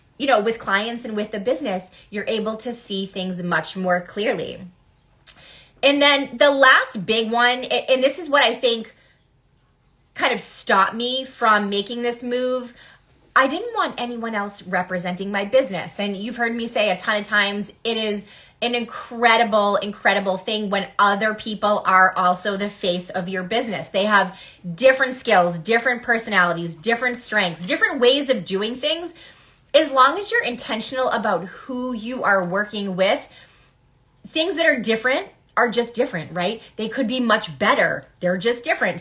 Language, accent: English, American